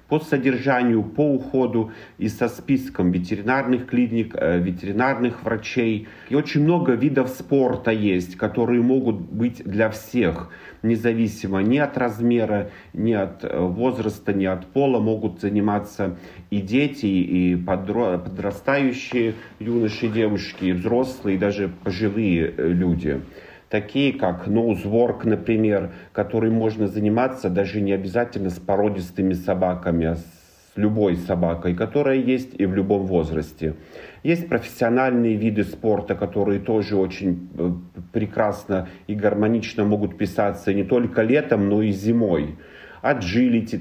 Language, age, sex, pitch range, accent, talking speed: Russian, 40-59, male, 95-120 Hz, native, 120 wpm